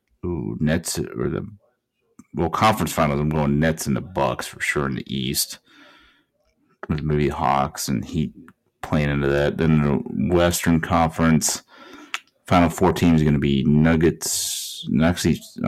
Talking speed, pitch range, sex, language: 140 wpm, 80-90 Hz, male, English